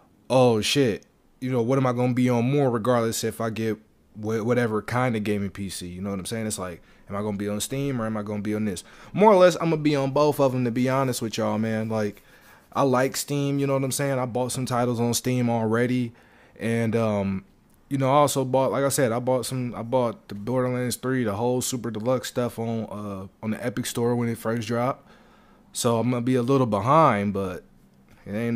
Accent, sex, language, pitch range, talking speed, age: American, male, English, 110-135 Hz, 240 wpm, 20-39